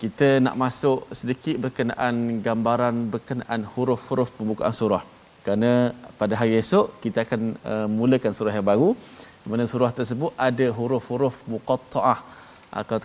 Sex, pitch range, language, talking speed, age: male, 110-130 Hz, Malayalam, 130 wpm, 20-39